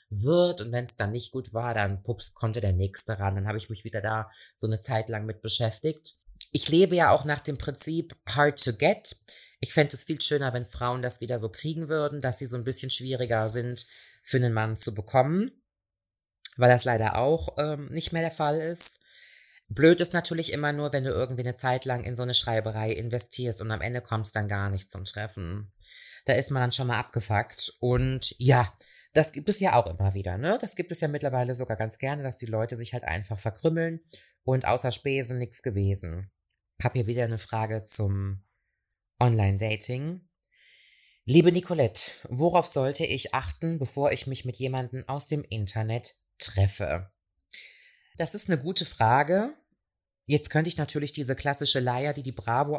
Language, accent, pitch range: German, German, 110-150 Hz